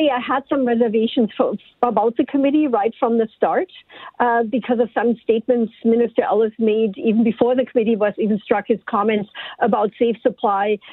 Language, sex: English, female